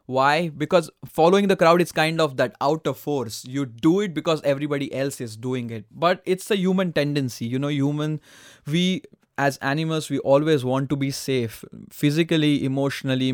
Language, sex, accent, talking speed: English, male, Indian, 175 wpm